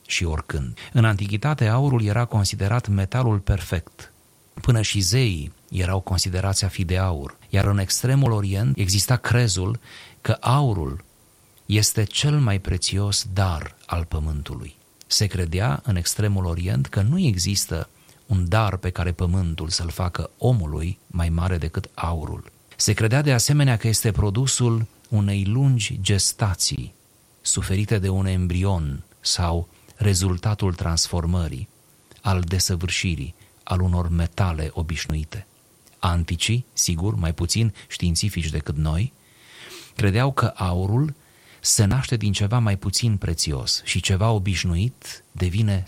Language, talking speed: Romanian, 125 wpm